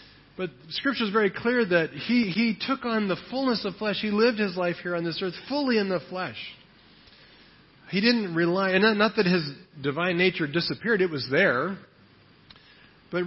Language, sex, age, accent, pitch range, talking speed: English, male, 40-59, American, 145-195 Hz, 185 wpm